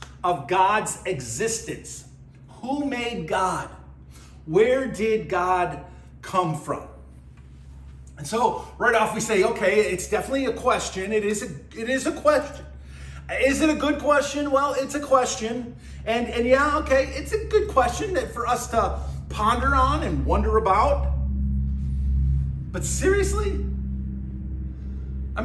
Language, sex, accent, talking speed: English, male, American, 135 wpm